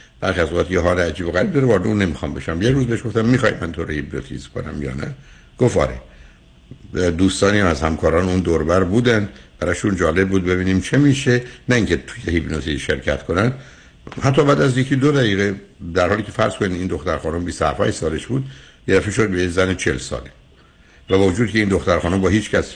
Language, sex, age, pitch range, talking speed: Persian, male, 60-79, 80-105 Hz, 190 wpm